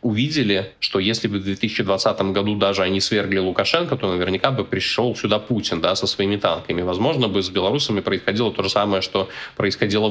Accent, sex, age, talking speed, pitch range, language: native, male, 20-39, 185 wpm, 95-110 Hz, Russian